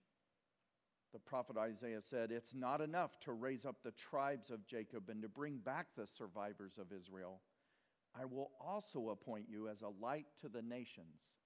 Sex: male